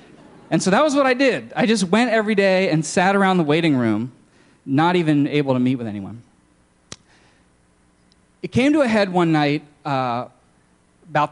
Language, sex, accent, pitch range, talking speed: English, male, American, 120-175 Hz, 180 wpm